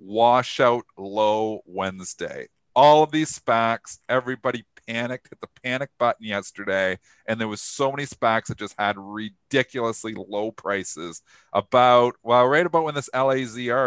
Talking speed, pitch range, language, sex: 145 wpm, 110-150 Hz, English, male